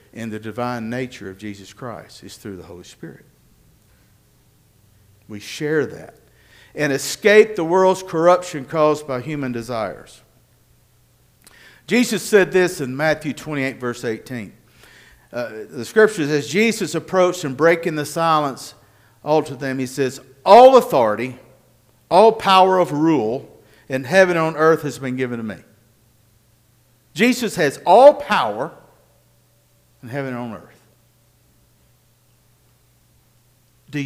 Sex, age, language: male, 50-69, English